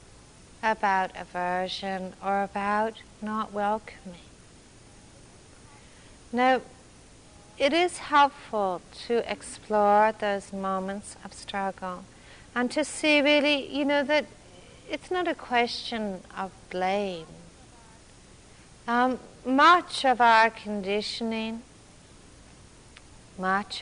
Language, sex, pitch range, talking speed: English, female, 195-250 Hz, 90 wpm